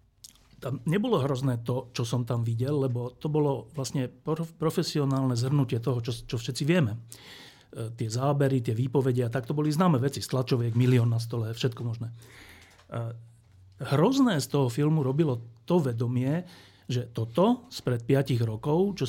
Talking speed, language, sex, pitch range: 155 wpm, Slovak, male, 120-160 Hz